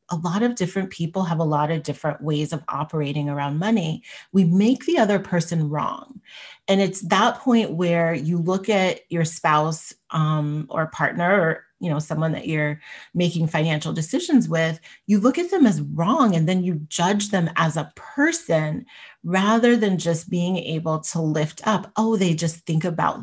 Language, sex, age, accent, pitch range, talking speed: English, female, 30-49, American, 160-210 Hz, 185 wpm